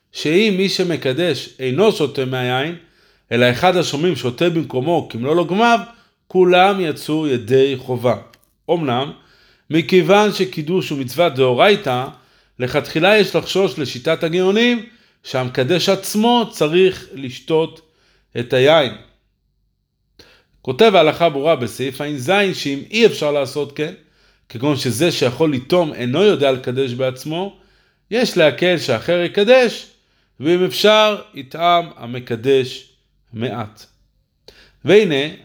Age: 50-69